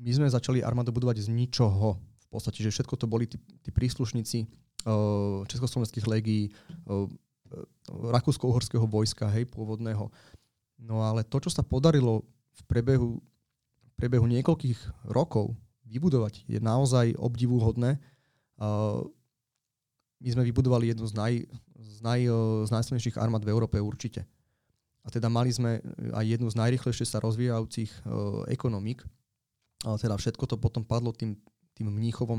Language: Slovak